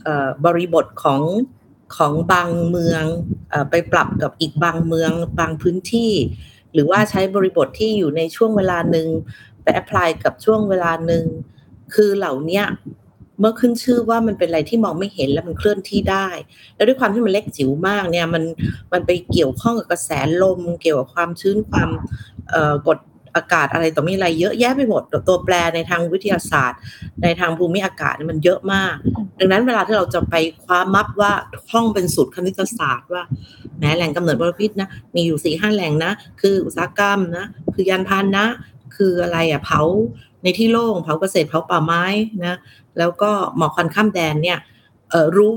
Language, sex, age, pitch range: Thai, female, 30-49, 160-195 Hz